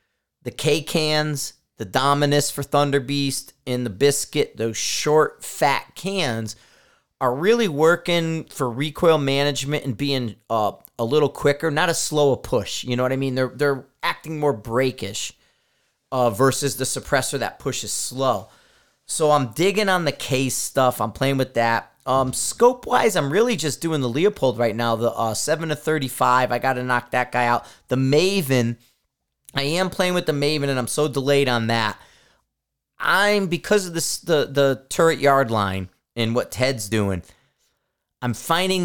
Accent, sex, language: American, male, English